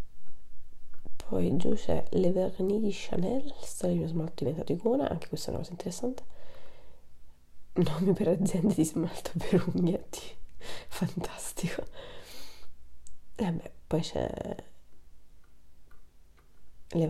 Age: 20-39